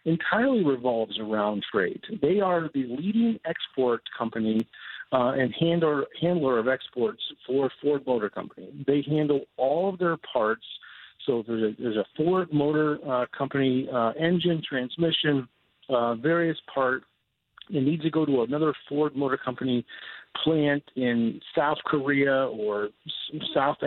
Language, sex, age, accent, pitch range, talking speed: English, male, 50-69, American, 125-150 Hz, 145 wpm